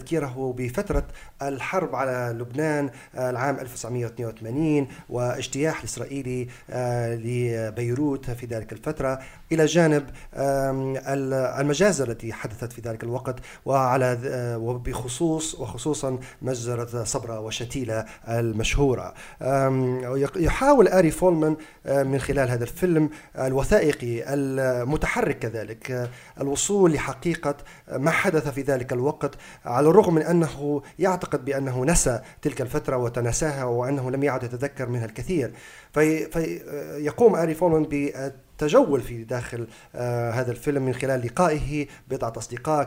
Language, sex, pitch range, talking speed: Arabic, male, 120-150 Hz, 105 wpm